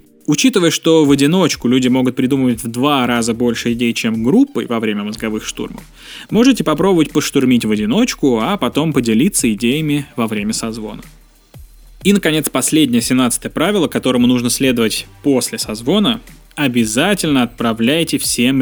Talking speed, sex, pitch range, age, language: 140 wpm, male, 120-185 Hz, 20-39, Russian